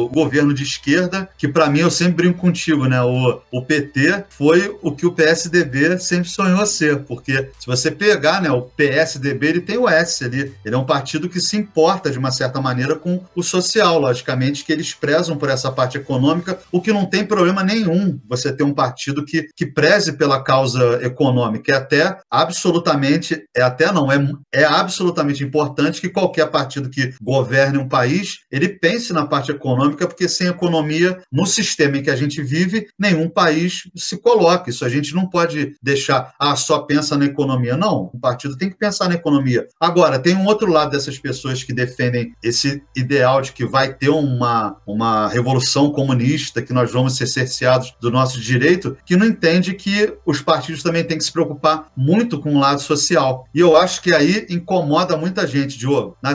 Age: 40-59